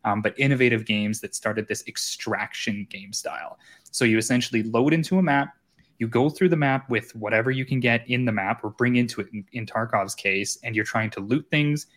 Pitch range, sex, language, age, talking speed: 115-145 Hz, male, English, 20-39, 220 wpm